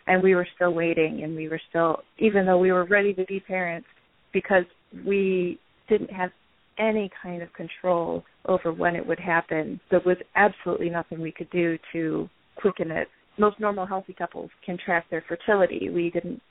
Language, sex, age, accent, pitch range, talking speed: English, female, 30-49, American, 165-185 Hz, 185 wpm